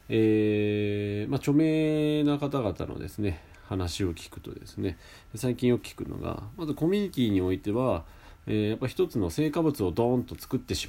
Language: Japanese